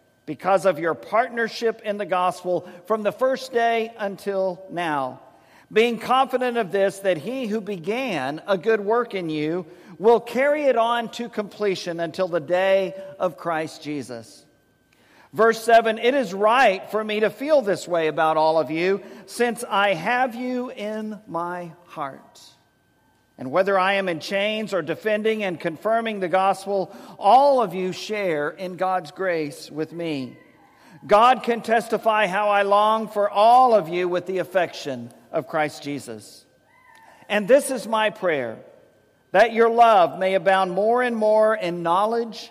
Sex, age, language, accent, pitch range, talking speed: male, 50-69, English, American, 170-225 Hz, 160 wpm